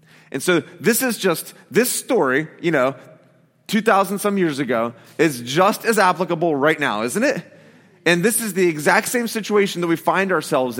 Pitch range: 150-200 Hz